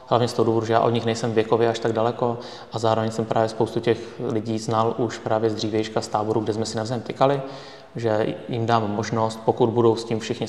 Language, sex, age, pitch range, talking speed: Czech, male, 20-39, 110-125 Hz, 235 wpm